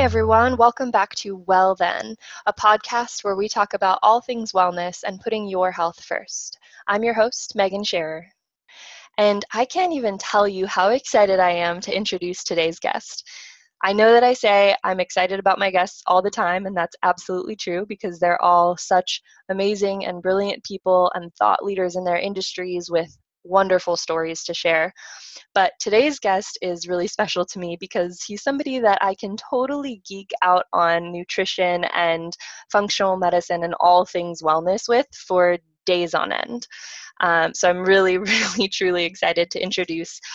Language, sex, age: English, female, 20-39